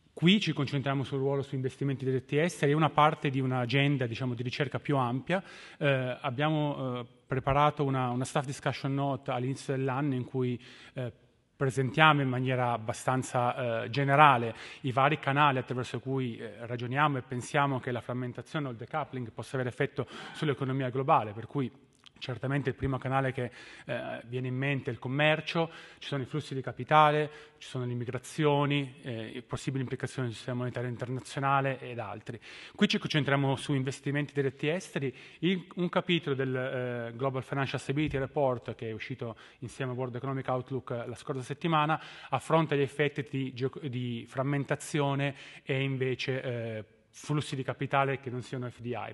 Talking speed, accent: 160 wpm, native